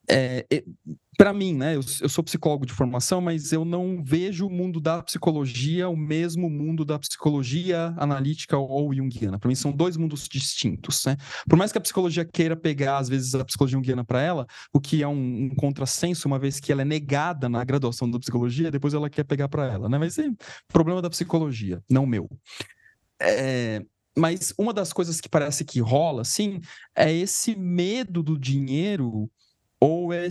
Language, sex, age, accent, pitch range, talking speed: Portuguese, male, 30-49, Brazilian, 125-165 Hz, 180 wpm